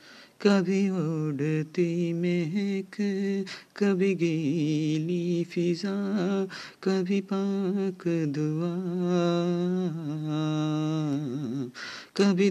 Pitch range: 135-175 Hz